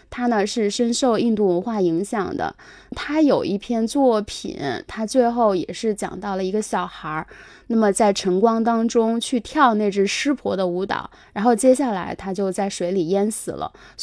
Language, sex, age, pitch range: Chinese, female, 20-39, 200-255 Hz